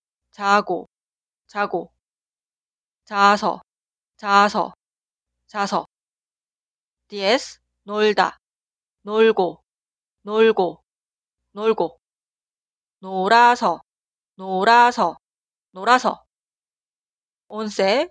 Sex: female